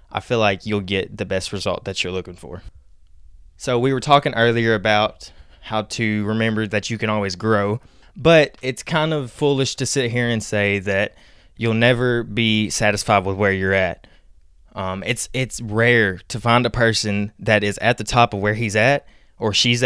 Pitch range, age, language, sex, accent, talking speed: 100-120 Hz, 20-39, English, male, American, 195 wpm